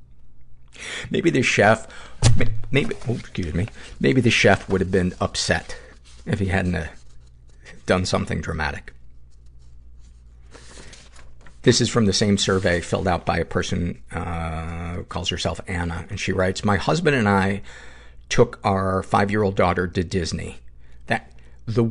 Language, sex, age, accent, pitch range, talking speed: English, male, 50-69, American, 65-105 Hz, 140 wpm